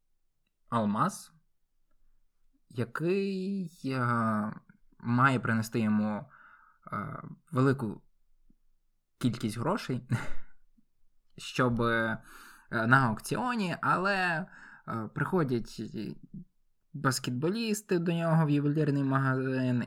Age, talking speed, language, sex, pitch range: 20-39, 55 wpm, Ukrainian, male, 115-135 Hz